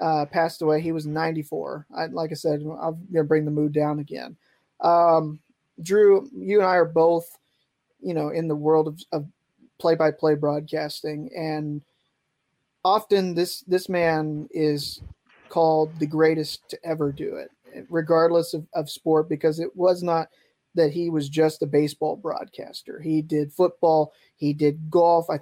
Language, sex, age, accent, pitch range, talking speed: English, male, 20-39, American, 150-170 Hz, 160 wpm